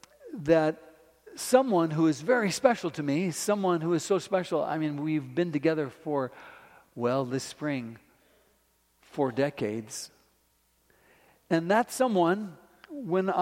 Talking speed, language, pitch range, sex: 125 wpm, English, 140-190 Hz, male